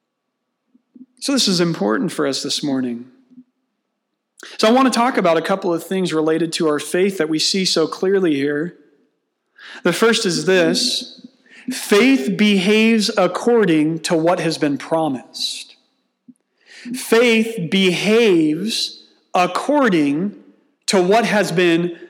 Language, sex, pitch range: English, male, 190-255 Hz